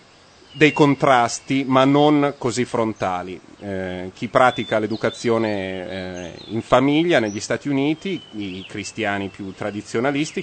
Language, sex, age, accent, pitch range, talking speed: Italian, male, 30-49, native, 105-140 Hz, 110 wpm